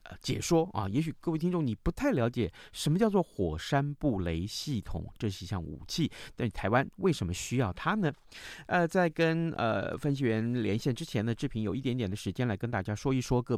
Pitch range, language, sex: 100-150 Hz, Chinese, male